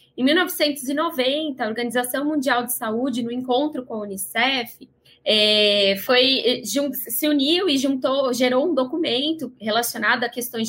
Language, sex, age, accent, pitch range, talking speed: Portuguese, female, 20-39, Brazilian, 240-295 Hz, 120 wpm